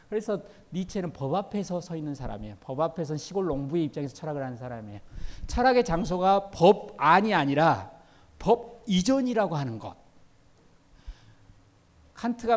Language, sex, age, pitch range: Korean, male, 40-59, 135-195 Hz